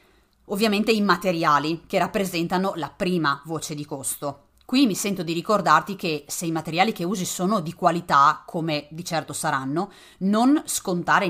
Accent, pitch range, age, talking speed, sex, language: native, 160-215 Hz, 30-49, 160 wpm, female, Italian